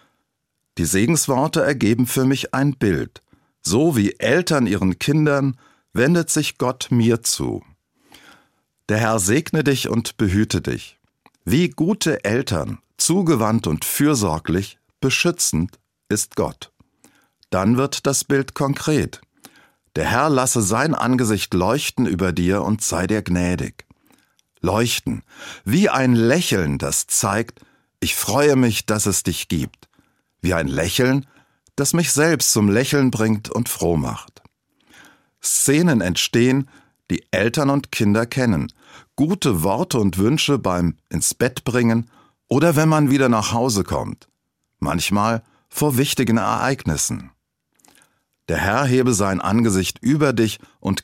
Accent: German